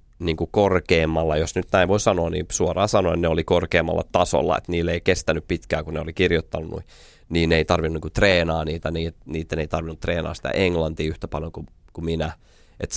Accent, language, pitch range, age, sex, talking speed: native, Finnish, 80-95 Hz, 30-49, male, 195 wpm